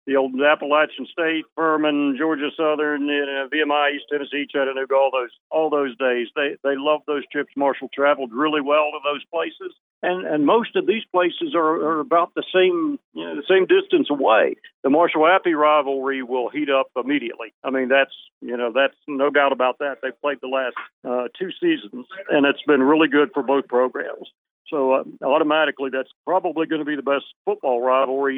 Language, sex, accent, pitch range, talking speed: English, male, American, 135-170 Hz, 195 wpm